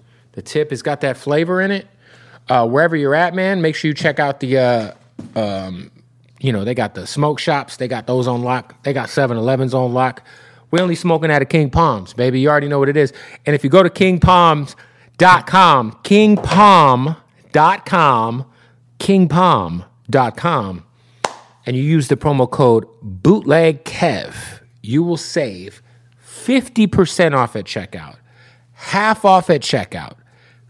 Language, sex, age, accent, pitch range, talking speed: English, male, 30-49, American, 120-165 Hz, 150 wpm